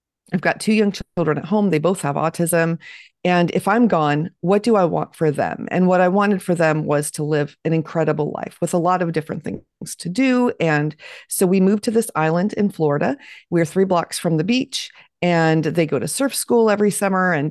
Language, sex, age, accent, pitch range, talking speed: English, female, 40-59, American, 160-200 Hz, 225 wpm